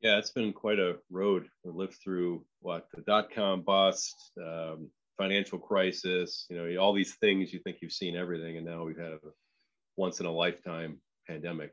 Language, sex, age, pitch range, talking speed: English, male, 30-49, 85-90 Hz, 190 wpm